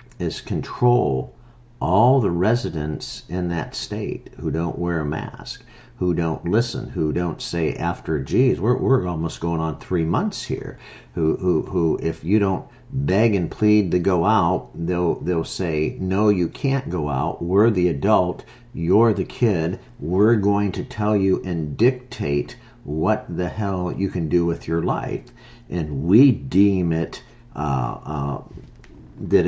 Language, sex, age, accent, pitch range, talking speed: English, male, 50-69, American, 85-120 Hz, 160 wpm